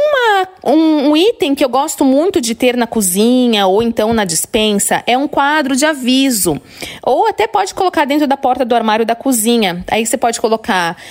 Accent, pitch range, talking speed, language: Brazilian, 195-270 Hz, 190 wpm, Portuguese